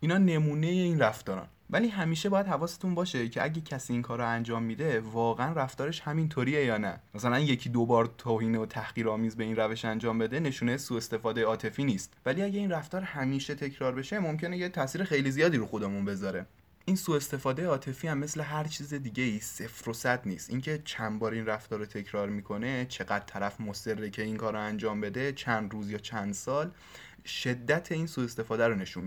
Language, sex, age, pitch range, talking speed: Persian, male, 20-39, 105-150 Hz, 195 wpm